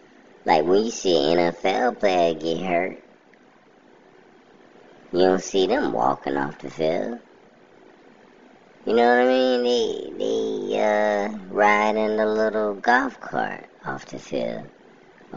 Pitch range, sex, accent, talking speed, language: 70-95 Hz, male, American, 130 wpm, English